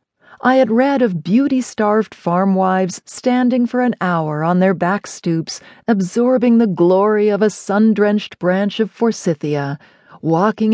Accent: American